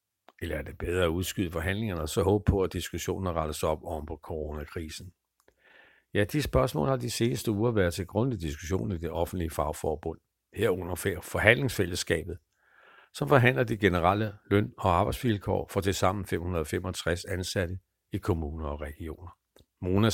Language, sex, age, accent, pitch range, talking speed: Danish, male, 60-79, native, 85-105 Hz, 155 wpm